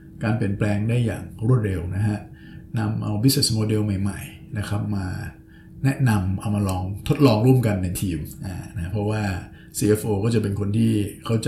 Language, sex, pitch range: Thai, male, 100-120 Hz